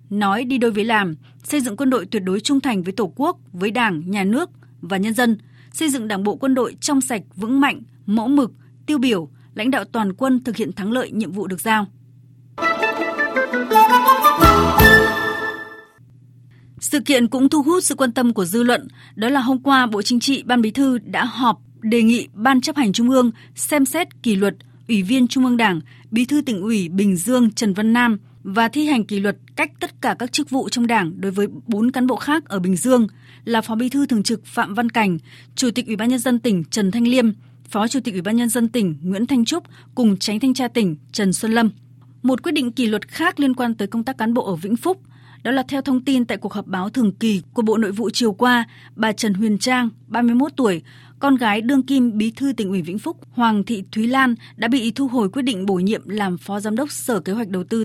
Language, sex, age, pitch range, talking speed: Vietnamese, female, 20-39, 200-260 Hz, 235 wpm